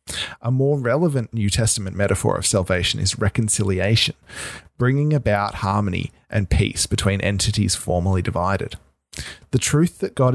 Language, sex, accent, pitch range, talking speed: English, male, Australian, 100-130 Hz, 135 wpm